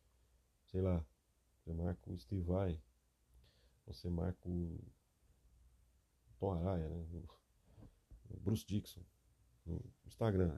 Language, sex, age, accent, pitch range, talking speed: Portuguese, male, 40-59, Brazilian, 80-105 Hz, 100 wpm